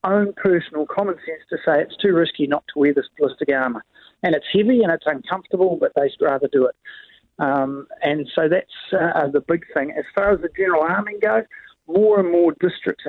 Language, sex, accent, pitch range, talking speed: English, male, Australian, 145-195 Hz, 205 wpm